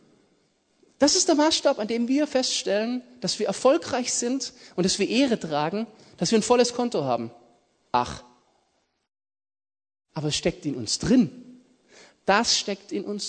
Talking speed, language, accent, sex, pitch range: 155 wpm, German, German, male, 185-255 Hz